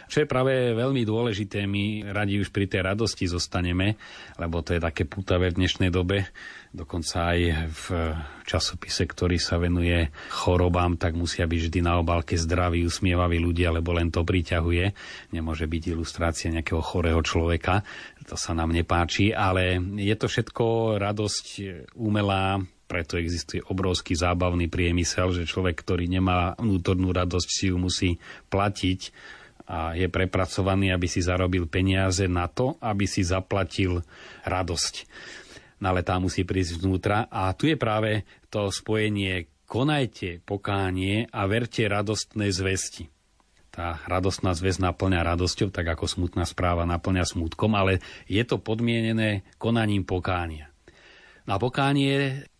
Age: 30-49